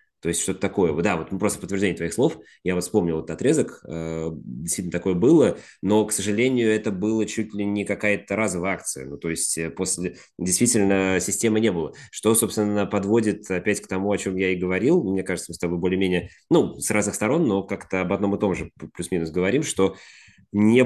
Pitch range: 90-110 Hz